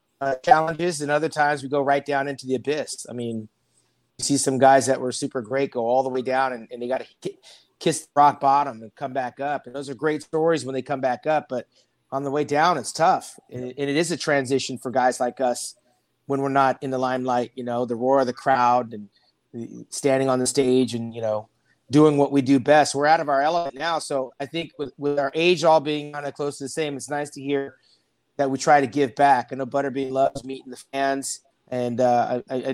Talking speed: 245 wpm